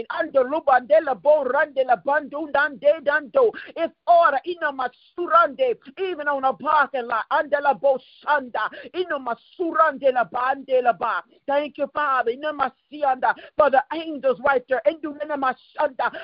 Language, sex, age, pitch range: English, male, 50-69, 260-315 Hz